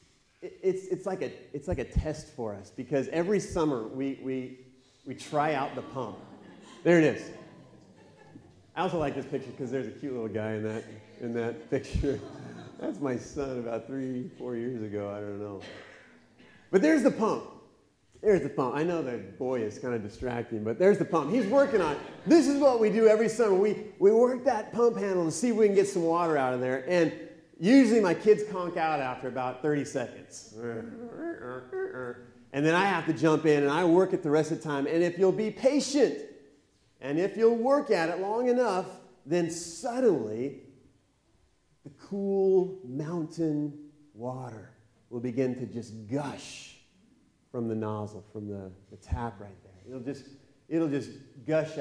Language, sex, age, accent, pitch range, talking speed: English, male, 40-59, American, 120-180 Hz, 185 wpm